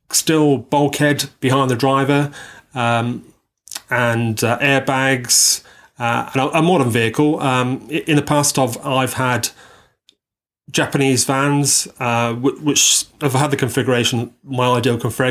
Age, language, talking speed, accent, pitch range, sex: 30-49, English, 125 wpm, British, 120-140 Hz, male